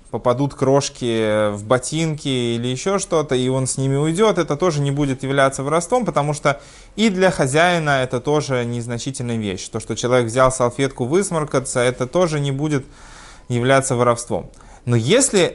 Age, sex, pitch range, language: 20-39, male, 115-150 Hz, Russian